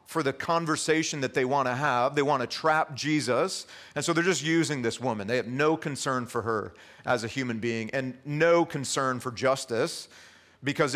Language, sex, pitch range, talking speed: English, male, 125-155 Hz, 195 wpm